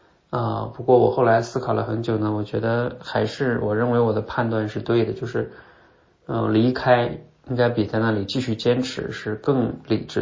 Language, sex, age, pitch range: Chinese, male, 20-39, 105-125 Hz